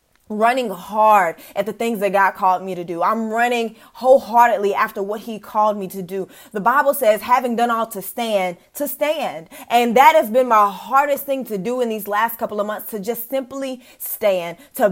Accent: American